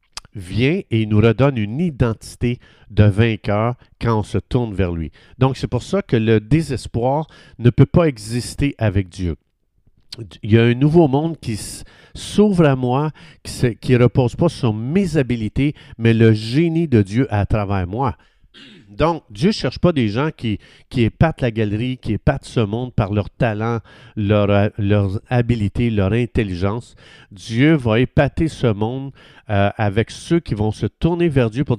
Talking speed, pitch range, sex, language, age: 170 wpm, 105-140 Hz, male, French, 50-69